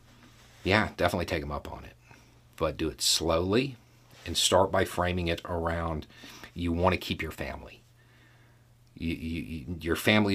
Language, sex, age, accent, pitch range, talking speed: English, male, 40-59, American, 85-120 Hz, 160 wpm